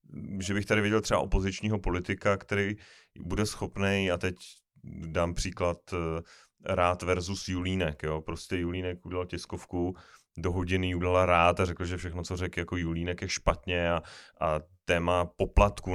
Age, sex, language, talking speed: 30-49, male, Czech, 150 wpm